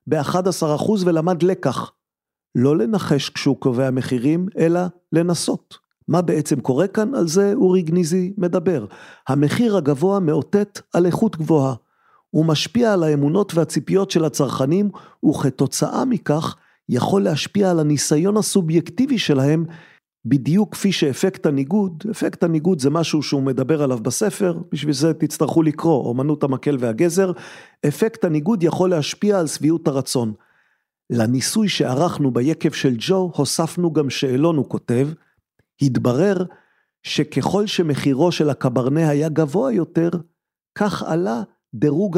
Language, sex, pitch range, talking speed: Hebrew, male, 145-185 Hz, 125 wpm